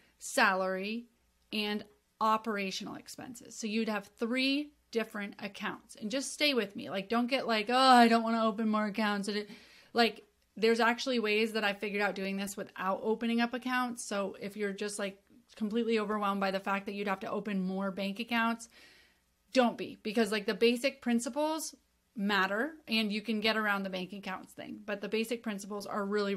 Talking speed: 190 wpm